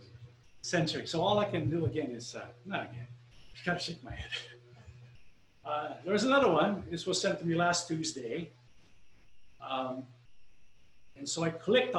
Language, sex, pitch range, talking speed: English, male, 120-195 Hz, 165 wpm